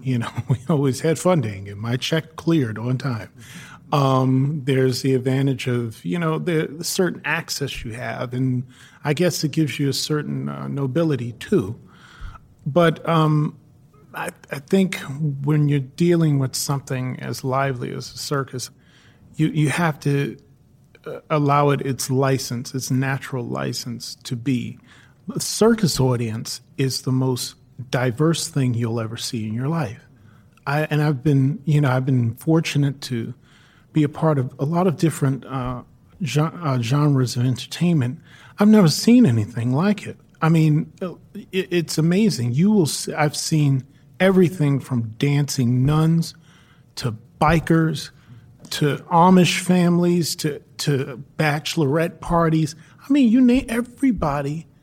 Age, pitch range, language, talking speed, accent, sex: 40-59, 130-160 Hz, English, 145 wpm, American, male